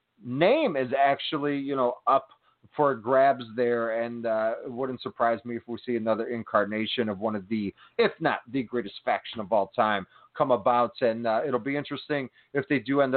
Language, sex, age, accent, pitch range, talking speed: English, male, 30-49, American, 110-140 Hz, 195 wpm